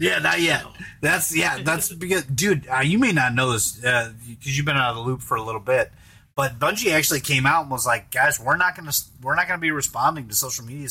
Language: English